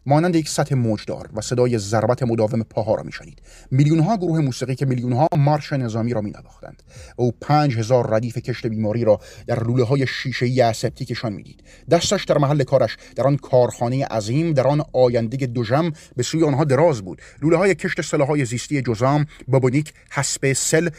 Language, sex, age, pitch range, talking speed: Persian, male, 30-49, 120-150 Hz, 185 wpm